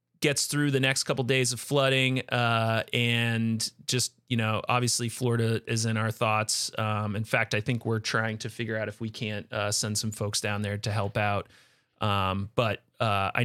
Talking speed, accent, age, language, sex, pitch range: 205 wpm, American, 30-49, English, male, 110-130 Hz